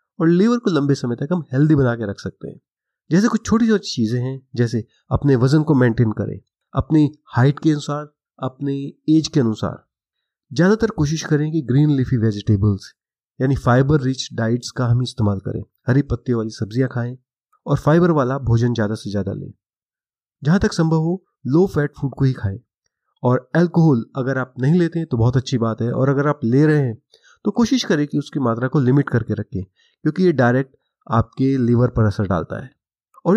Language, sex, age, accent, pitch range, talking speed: Hindi, male, 30-49, native, 120-155 Hz, 195 wpm